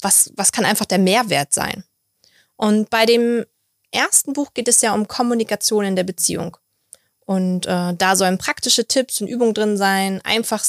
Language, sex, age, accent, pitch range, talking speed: German, female, 20-39, German, 180-225 Hz, 175 wpm